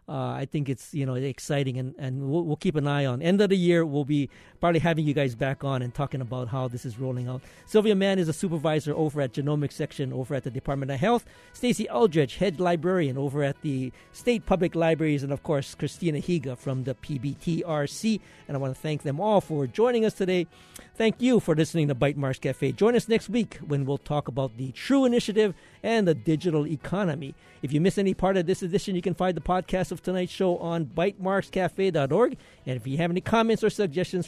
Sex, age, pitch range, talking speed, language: male, 50-69, 140-185 Hz, 225 wpm, English